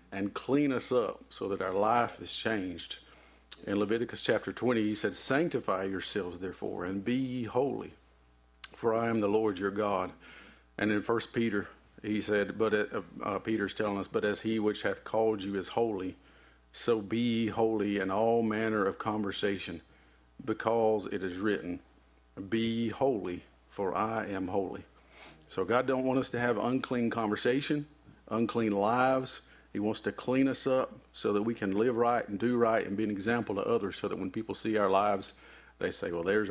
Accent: American